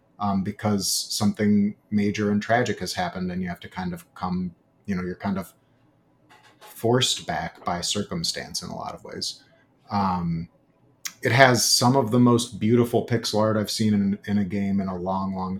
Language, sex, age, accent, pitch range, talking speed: English, male, 30-49, American, 100-125 Hz, 190 wpm